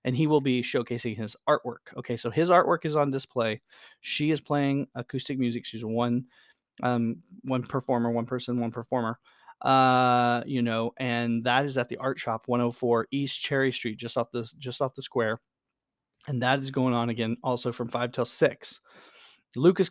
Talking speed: 185 wpm